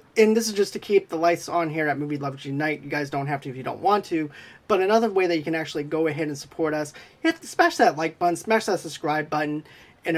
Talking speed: 270 wpm